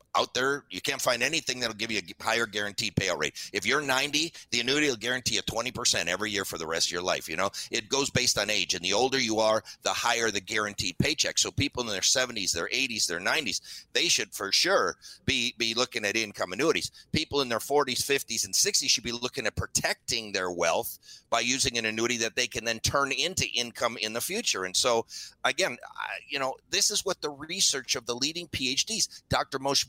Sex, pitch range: male, 115-140 Hz